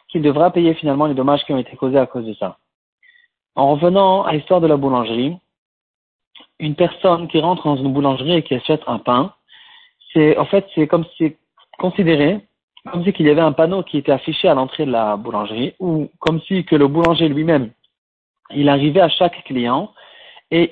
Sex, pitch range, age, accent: male, 140-190 Hz, 40-59, French